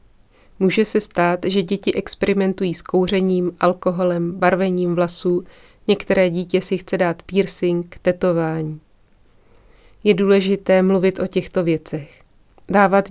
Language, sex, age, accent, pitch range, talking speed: Czech, female, 30-49, native, 170-190 Hz, 115 wpm